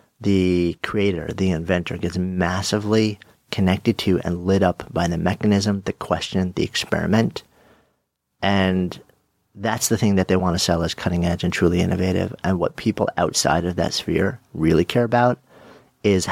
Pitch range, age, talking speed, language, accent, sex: 90-105 Hz, 40-59, 160 wpm, English, American, male